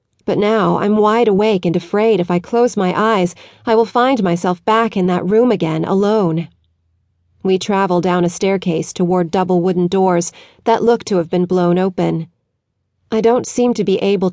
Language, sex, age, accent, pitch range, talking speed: English, female, 40-59, American, 170-215 Hz, 185 wpm